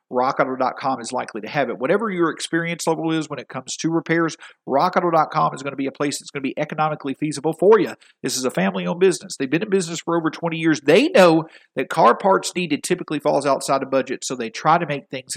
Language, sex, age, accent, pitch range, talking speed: English, male, 50-69, American, 135-175 Hz, 240 wpm